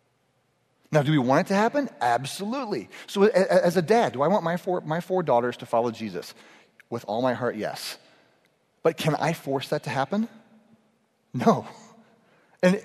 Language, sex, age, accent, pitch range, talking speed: English, male, 30-49, American, 135-185 Hz, 175 wpm